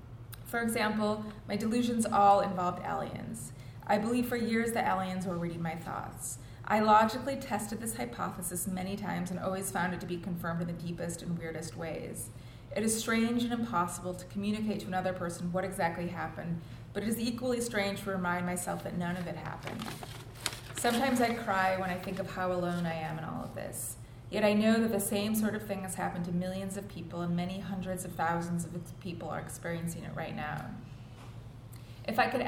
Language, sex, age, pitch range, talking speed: English, female, 20-39, 165-205 Hz, 200 wpm